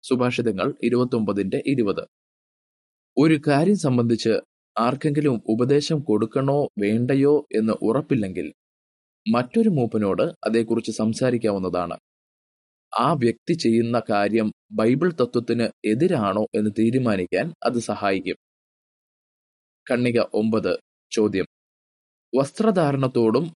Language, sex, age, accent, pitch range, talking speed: Malayalam, male, 20-39, native, 110-145 Hz, 80 wpm